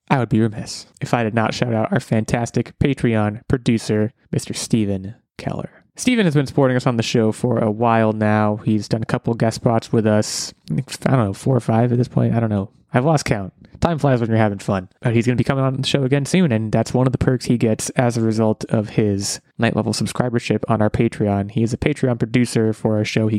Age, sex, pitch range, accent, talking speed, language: 20-39, male, 110-135 Hz, American, 250 wpm, English